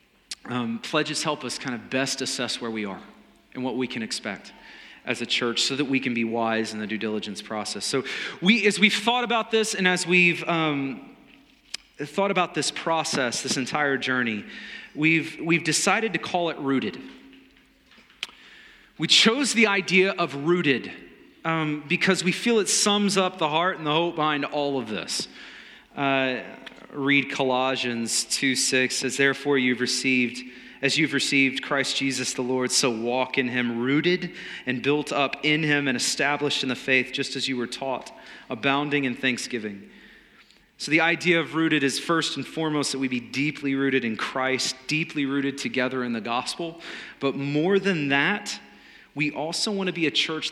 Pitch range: 130-170 Hz